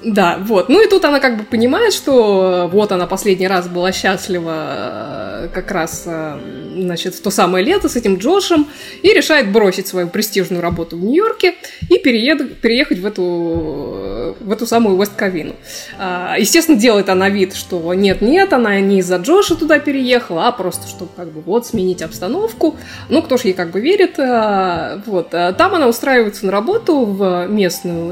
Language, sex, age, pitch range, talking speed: Russian, female, 20-39, 180-265 Hz, 170 wpm